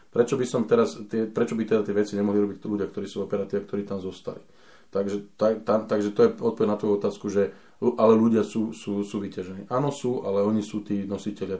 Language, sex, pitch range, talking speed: Slovak, male, 100-115 Hz, 230 wpm